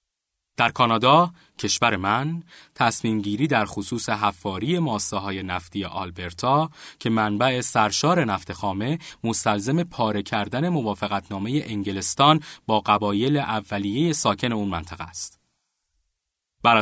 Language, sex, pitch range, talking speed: Persian, male, 100-135 Hz, 105 wpm